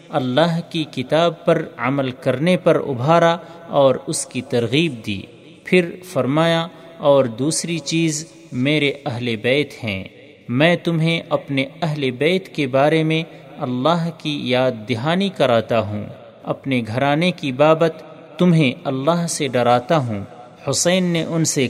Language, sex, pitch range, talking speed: Urdu, male, 130-165 Hz, 135 wpm